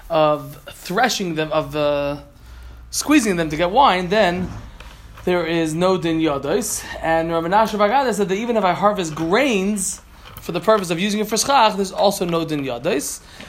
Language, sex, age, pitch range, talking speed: Malay, male, 20-39, 160-220 Hz, 180 wpm